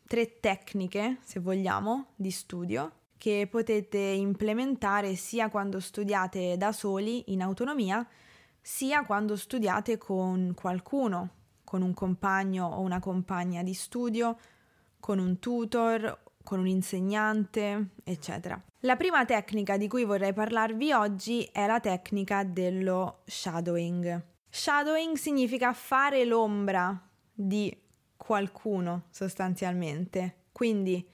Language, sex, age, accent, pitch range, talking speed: Italian, female, 20-39, native, 185-245 Hz, 110 wpm